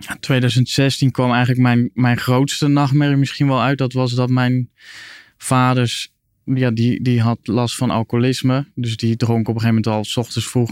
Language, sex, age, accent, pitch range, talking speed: Dutch, male, 20-39, Dutch, 110-130 Hz, 185 wpm